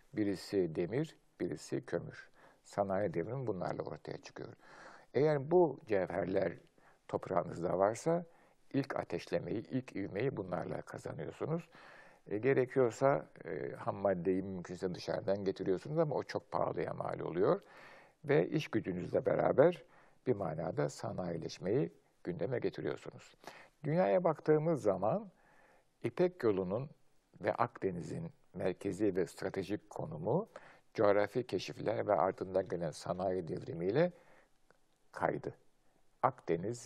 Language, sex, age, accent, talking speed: Turkish, male, 60-79, native, 105 wpm